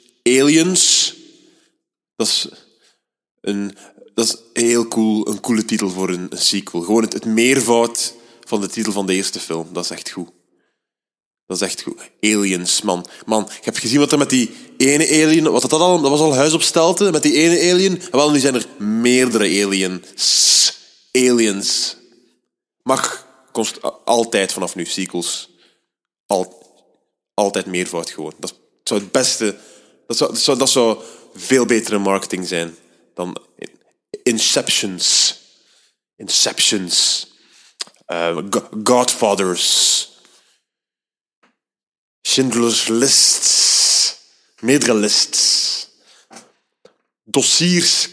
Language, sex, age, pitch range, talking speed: Dutch, male, 20-39, 100-165 Hz, 120 wpm